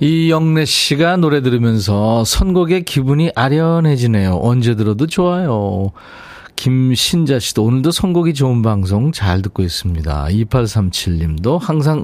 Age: 40-59